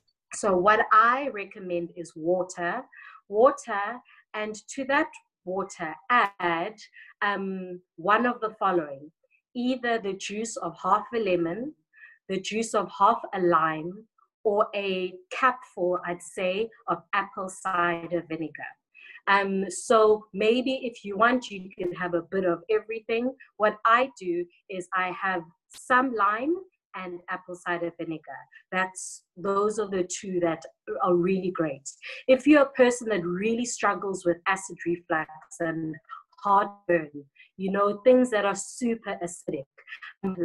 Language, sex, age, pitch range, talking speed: English, female, 30-49, 175-215 Hz, 140 wpm